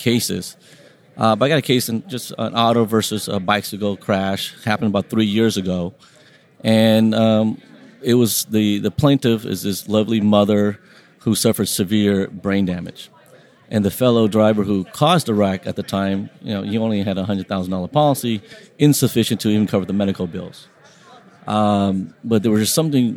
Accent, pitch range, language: American, 100-115 Hz, English